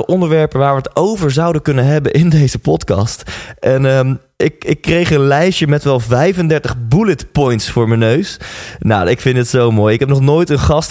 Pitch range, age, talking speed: 110-155 Hz, 20-39, 210 wpm